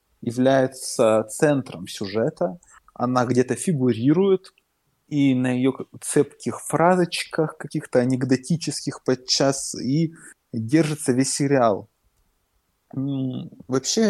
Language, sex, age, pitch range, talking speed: Ukrainian, male, 20-39, 120-150 Hz, 80 wpm